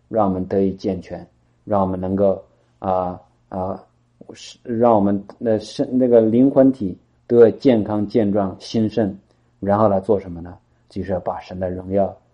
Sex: male